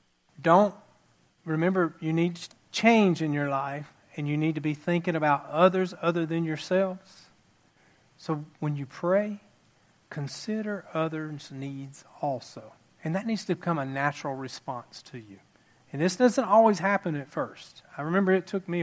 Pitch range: 140-175 Hz